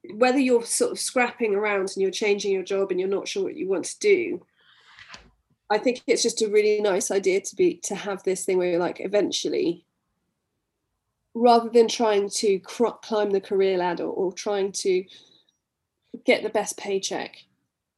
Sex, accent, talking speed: female, British, 180 wpm